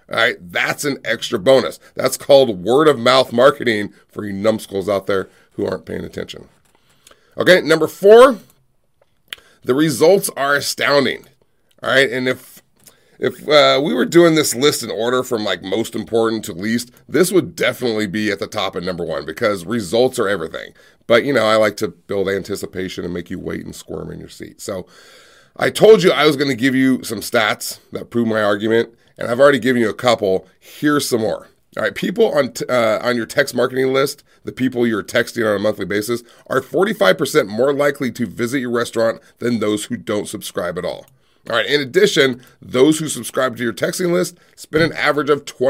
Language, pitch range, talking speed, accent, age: English, 110-145 Hz, 195 wpm, American, 30-49